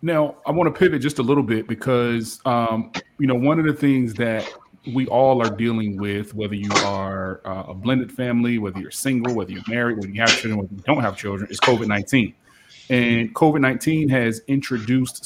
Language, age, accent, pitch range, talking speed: English, 30-49, American, 115-130 Hz, 200 wpm